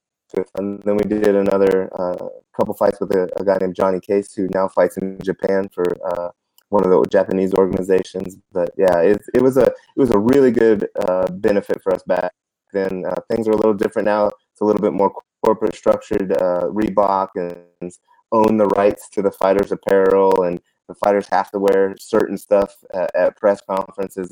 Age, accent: 20-39, American